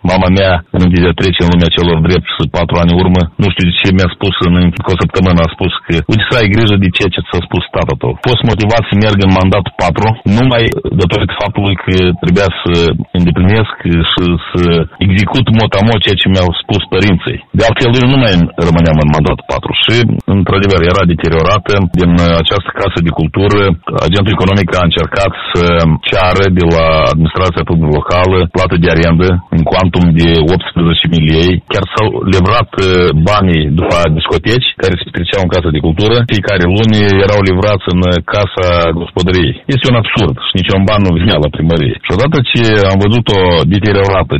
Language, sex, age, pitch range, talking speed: Romanian, male, 40-59, 85-105 Hz, 180 wpm